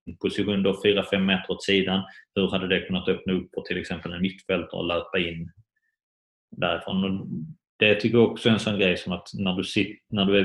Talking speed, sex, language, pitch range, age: 210 wpm, male, Swedish, 90-105 Hz, 30-49